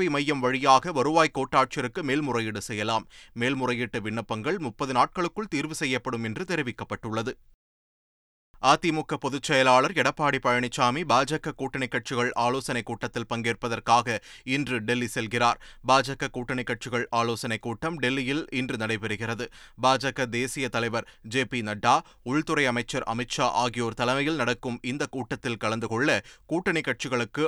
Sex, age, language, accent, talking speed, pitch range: male, 30-49, Tamil, native, 110 wpm, 120-150 Hz